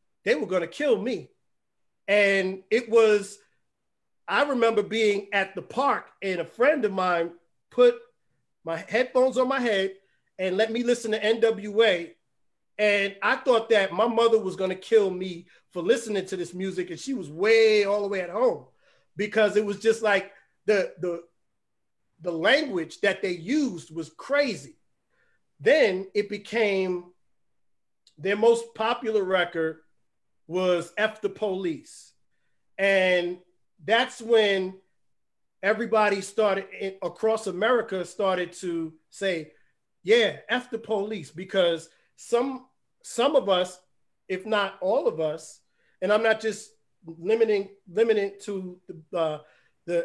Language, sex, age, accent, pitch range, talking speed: English, male, 40-59, American, 180-220 Hz, 135 wpm